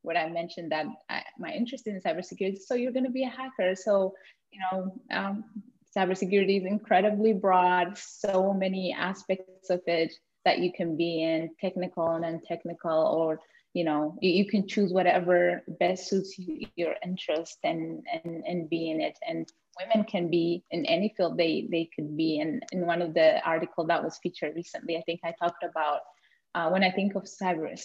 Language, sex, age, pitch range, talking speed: English, female, 20-39, 165-190 Hz, 190 wpm